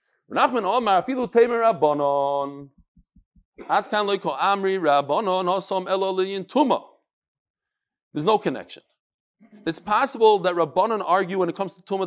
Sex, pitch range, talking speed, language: male, 175-230 Hz, 65 wpm, English